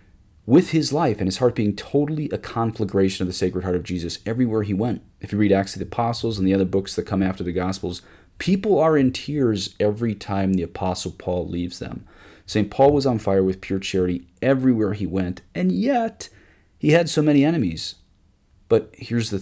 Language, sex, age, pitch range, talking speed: English, male, 30-49, 90-120 Hz, 205 wpm